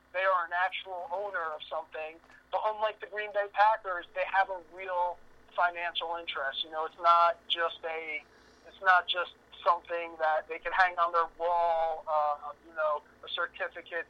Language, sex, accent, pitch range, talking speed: English, male, American, 165-185 Hz, 175 wpm